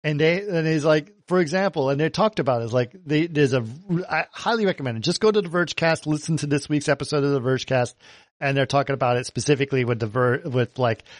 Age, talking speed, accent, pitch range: 50-69, 230 wpm, American, 130-165 Hz